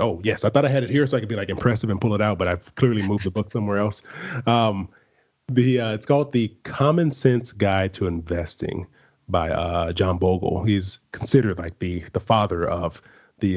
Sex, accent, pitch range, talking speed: male, American, 95-120 Hz, 215 wpm